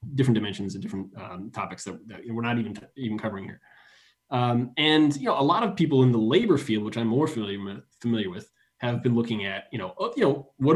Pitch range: 110-135 Hz